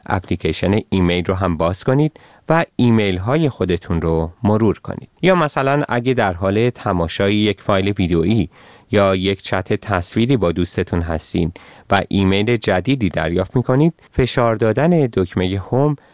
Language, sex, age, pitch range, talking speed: Persian, male, 30-49, 90-130 Hz, 145 wpm